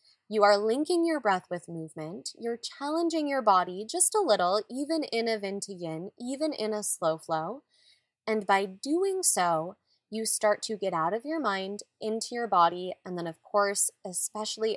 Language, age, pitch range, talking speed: English, 20-39, 175-220 Hz, 175 wpm